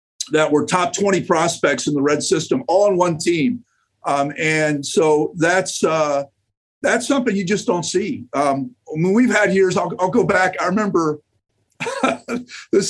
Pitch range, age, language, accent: 155-215 Hz, 50-69, English, American